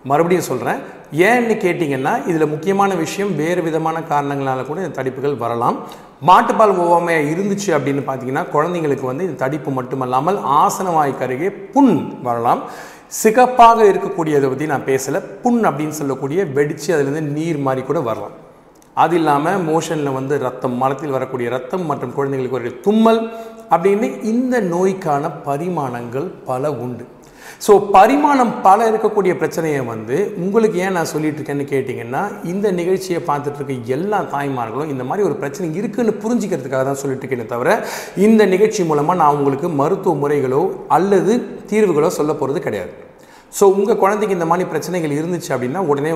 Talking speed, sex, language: 140 wpm, male, Tamil